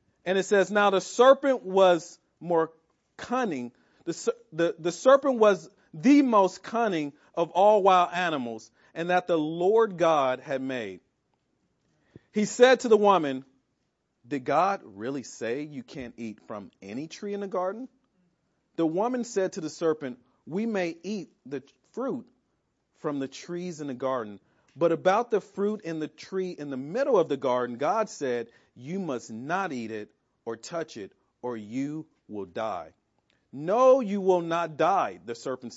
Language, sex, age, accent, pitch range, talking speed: English, male, 40-59, American, 135-195 Hz, 165 wpm